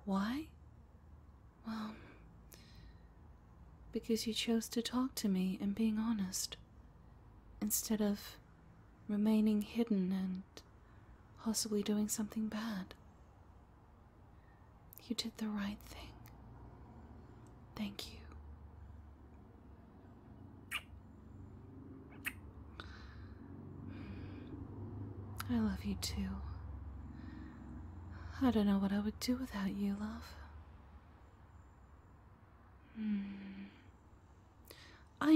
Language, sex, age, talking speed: English, female, 30-49, 75 wpm